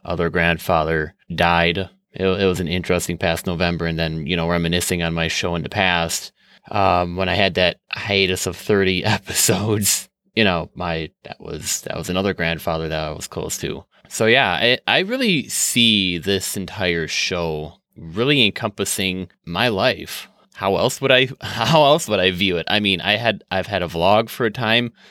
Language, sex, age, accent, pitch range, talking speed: English, male, 20-39, American, 90-110 Hz, 185 wpm